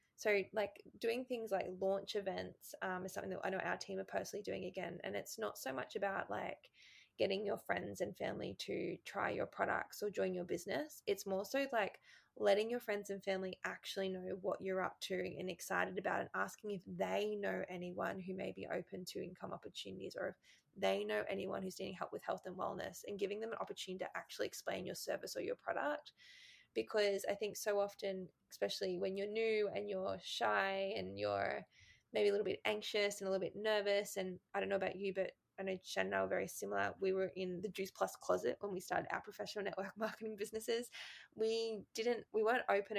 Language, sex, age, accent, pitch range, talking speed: English, female, 20-39, Australian, 185-215 Hz, 215 wpm